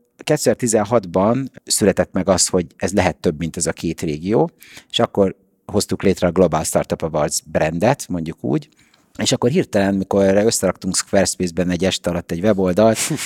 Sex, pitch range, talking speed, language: male, 90-115 Hz, 160 wpm, Hungarian